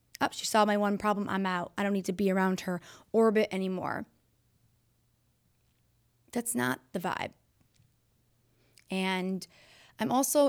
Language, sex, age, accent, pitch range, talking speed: English, female, 20-39, American, 185-245 Hz, 135 wpm